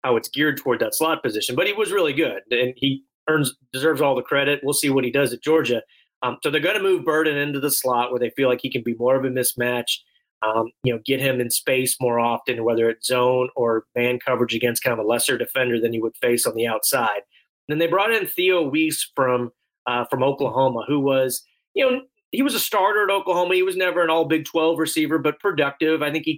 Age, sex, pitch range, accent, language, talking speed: 30-49, male, 125-150 Hz, American, English, 245 wpm